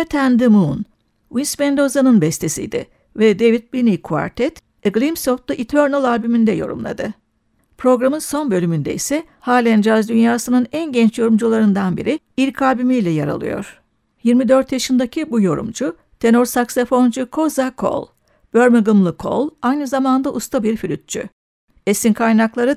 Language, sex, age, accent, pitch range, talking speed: Turkish, female, 60-79, native, 220-270 Hz, 130 wpm